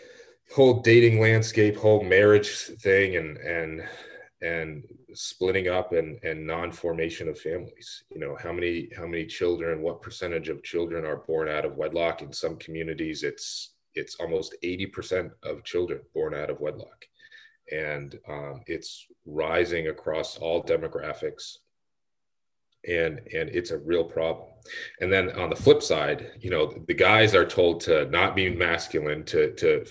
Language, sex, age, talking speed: English, male, 30-49, 150 wpm